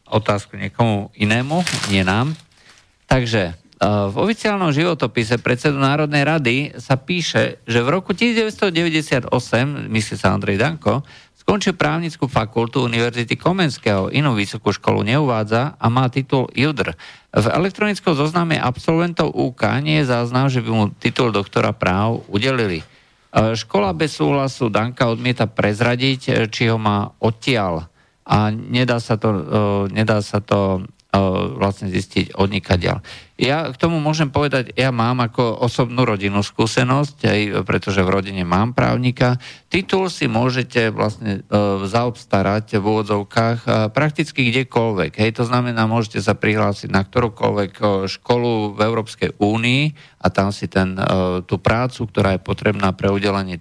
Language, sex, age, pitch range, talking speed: Slovak, male, 50-69, 100-135 Hz, 140 wpm